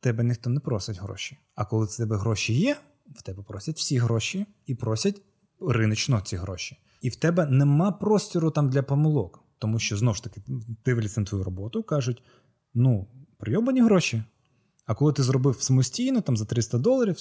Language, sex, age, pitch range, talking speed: Ukrainian, male, 20-39, 110-140 Hz, 175 wpm